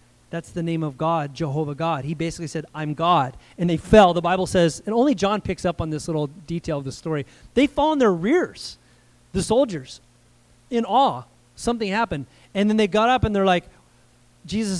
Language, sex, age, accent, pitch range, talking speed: English, male, 30-49, American, 150-200 Hz, 205 wpm